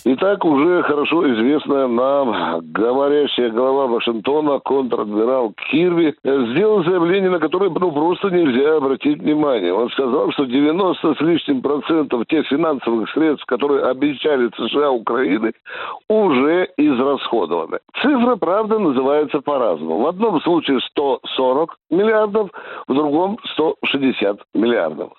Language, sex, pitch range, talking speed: Russian, male, 150-230 Hz, 115 wpm